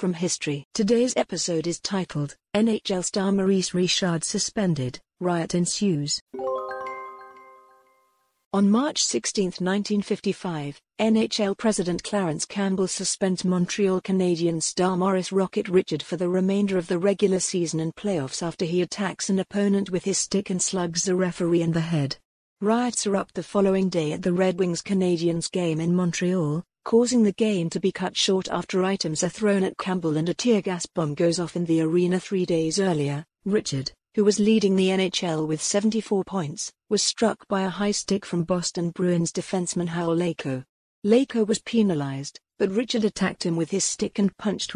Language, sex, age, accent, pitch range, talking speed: English, female, 50-69, British, 170-200 Hz, 165 wpm